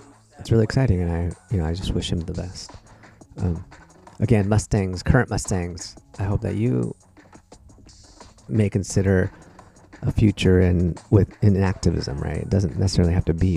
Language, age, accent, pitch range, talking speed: English, 30-49, American, 90-105 Hz, 170 wpm